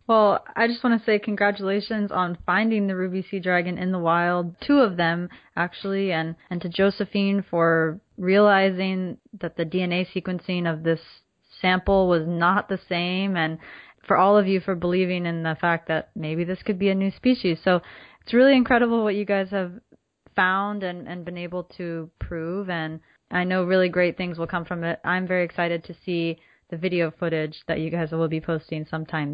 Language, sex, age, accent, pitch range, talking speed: English, female, 20-39, American, 175-215 Hz, 195 wpm